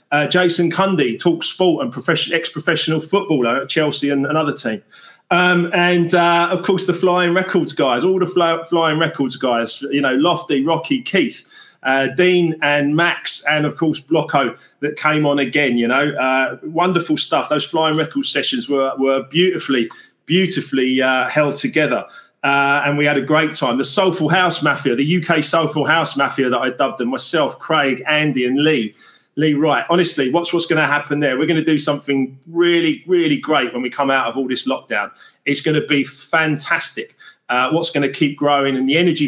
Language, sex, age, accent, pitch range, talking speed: English, male, 30-49, British, 140-170 Hz, 190 wpm